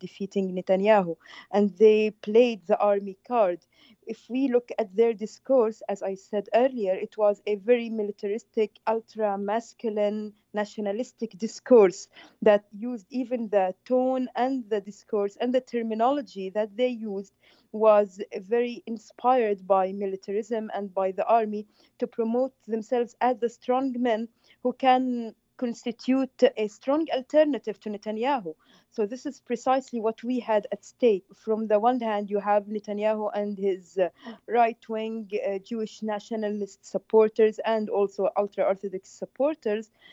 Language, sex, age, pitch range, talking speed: English, female, 40-59, 200-235 Hz, 135 wpm